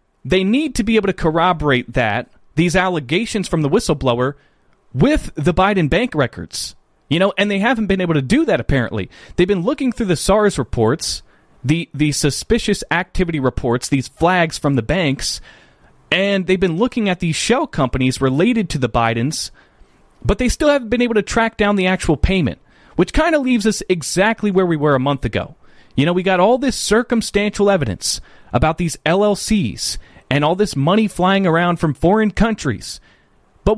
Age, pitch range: 30-49, 145-210 Hz